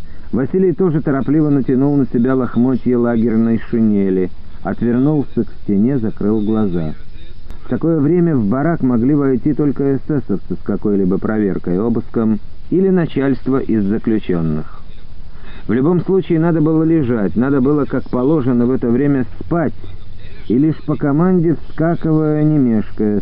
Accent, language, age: native, Russian, 50-69